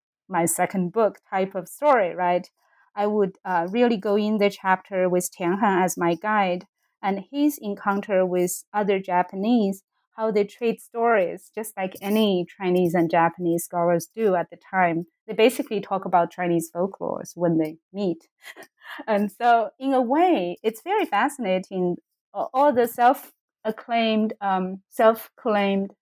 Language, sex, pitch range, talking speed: English, female, 185-225 Hz, 145 wpm